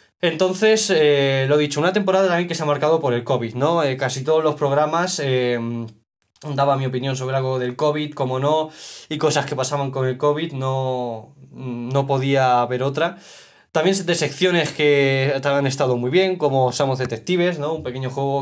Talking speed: 185 wpm